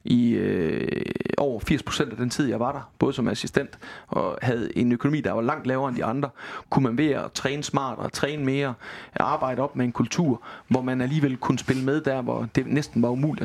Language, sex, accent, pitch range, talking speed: Danish, male, native, 120-145 Hz, 230 wpm